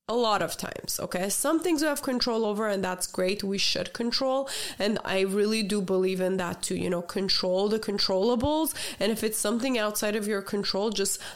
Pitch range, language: 195-250 Hz, English